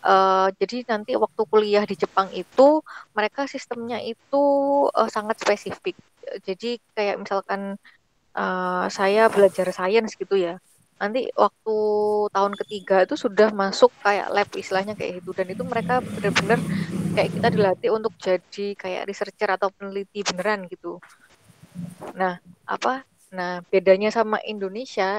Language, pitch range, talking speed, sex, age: Indonesian, 190-230 Hz, 135 wpm, female, 20-39